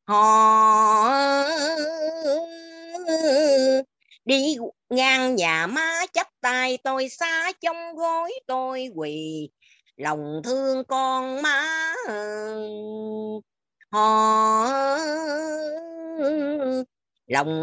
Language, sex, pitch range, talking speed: Vietnamese, female, 220-305 Hz, 65 wpm